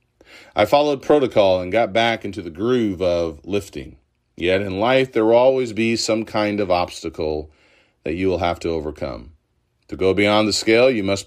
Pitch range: 95-125 Hz